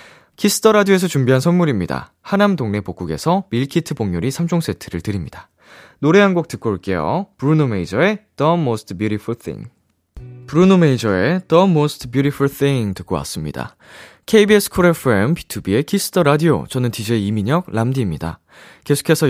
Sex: male